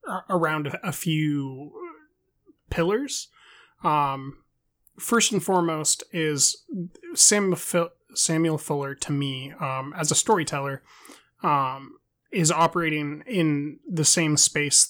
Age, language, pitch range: 20-39, English, 140-170 Hz